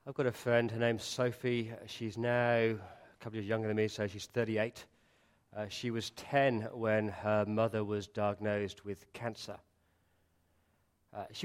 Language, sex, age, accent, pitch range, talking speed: English, male, 40-59, British, 100-125 Hz, 170 wpm